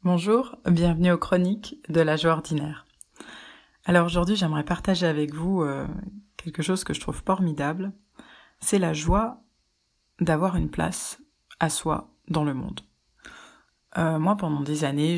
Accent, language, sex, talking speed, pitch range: French, French, female, 145 wpm, 150-185 Hz